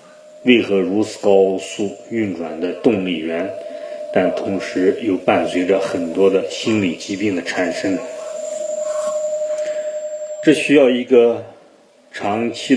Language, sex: Chinese, male